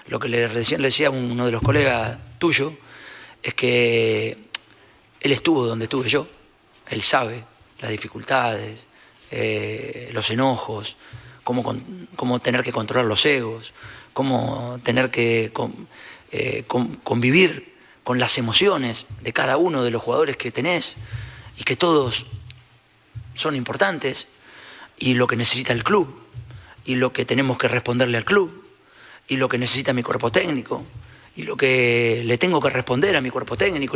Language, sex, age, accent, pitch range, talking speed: Spanish, male, 40-59, Argentinian, 115-130 Hz, 150 wpm